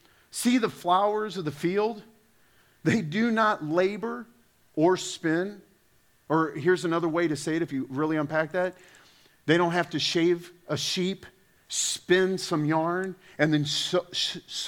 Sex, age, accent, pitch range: male, 40-59, American, 150-205 Hz